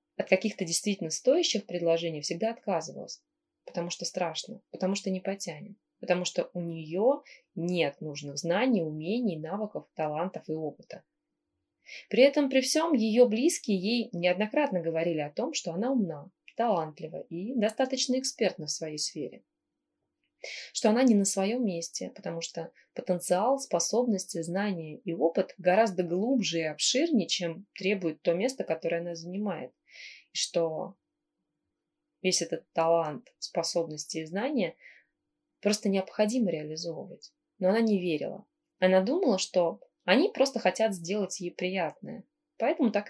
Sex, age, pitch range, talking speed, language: female, 20-39, 170-235 Hz, 135 wpm, Russian